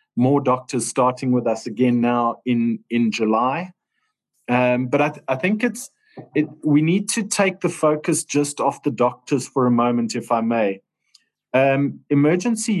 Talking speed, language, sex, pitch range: 170 wpm, English, male, 120-150 Hz